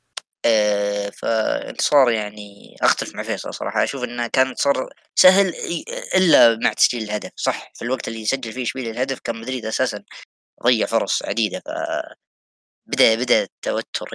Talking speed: 150 wpm